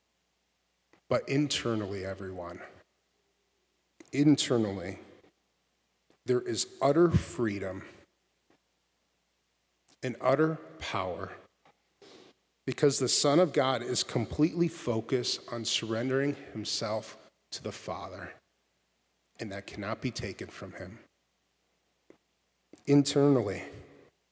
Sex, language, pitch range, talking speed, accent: male, English, 85-120 Hz, 80 wpm, American